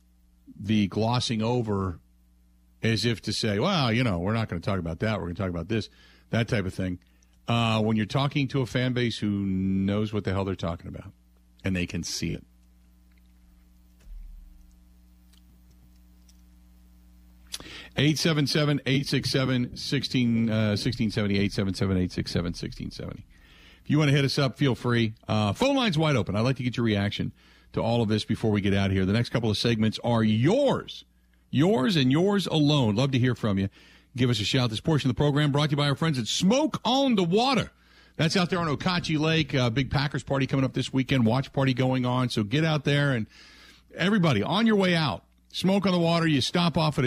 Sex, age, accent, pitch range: male, 50-69, American, 95-140 Hz